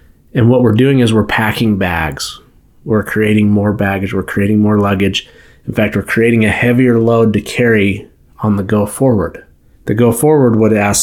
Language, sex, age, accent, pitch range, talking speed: English, male, 30-49, American, 95-115 Hz, 185 wpm